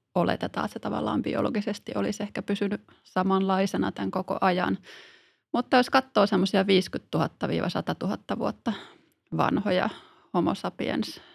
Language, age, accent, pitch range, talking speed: Finnish, 20-39, native, 170-205 Hz, 115 wpm